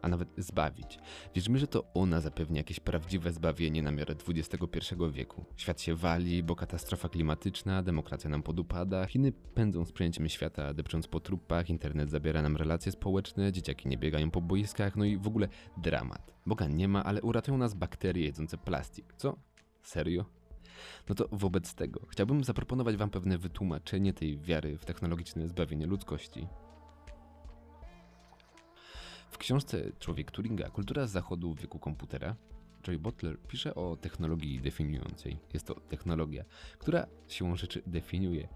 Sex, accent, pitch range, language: male, native, 80-95 Hz, Polish